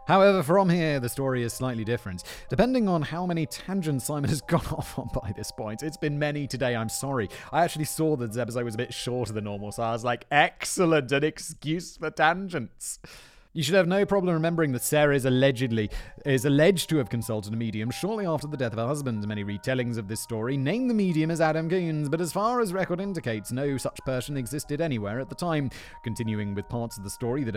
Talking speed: 225 wpm